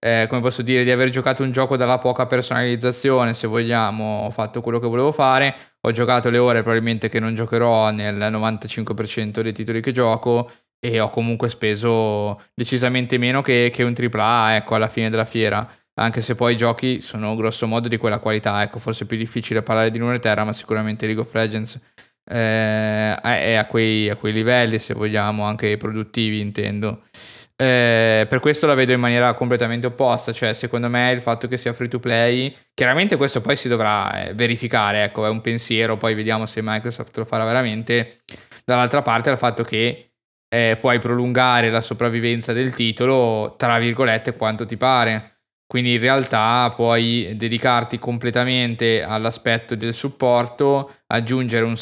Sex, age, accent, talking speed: male, 10-29, native, 175 wpm